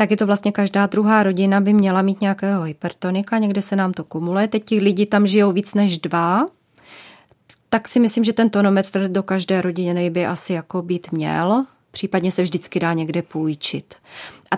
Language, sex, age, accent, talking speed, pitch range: Czech, female, 20-39, native, 190 wpm, 185-210 Hz